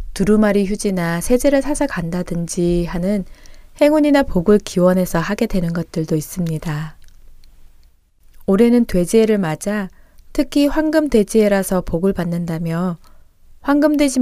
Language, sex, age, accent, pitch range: Korean, female, 20-39, native, 175-245 Hz